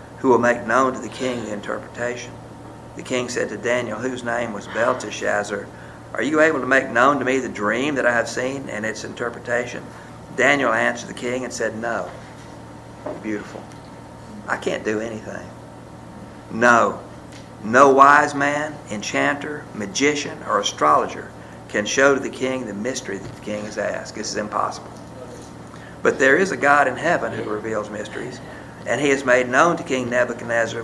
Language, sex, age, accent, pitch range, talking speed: English, male, 50-69, American, 110-130 Hz, 170 wpm